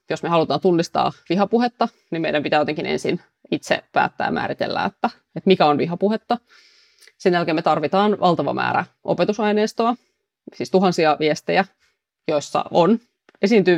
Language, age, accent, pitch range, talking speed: Finnish, 30-49, native, 160-215 Hz, 135 wpm